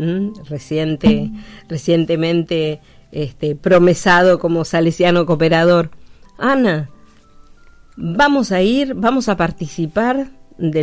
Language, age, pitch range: Spanish, 40-59, 155-190 Hz